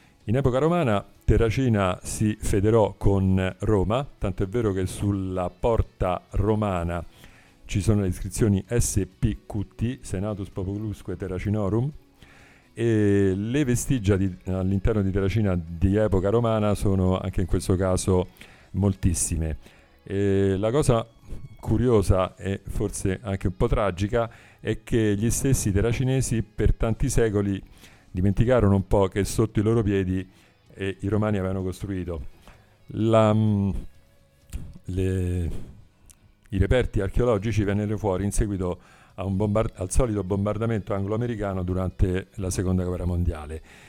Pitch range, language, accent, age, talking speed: 95-110 Hz, Italian, native, 40-59, 125 wpm